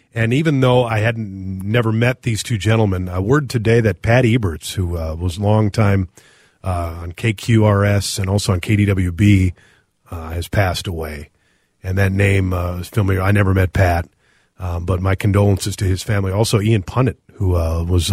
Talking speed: 185 wpm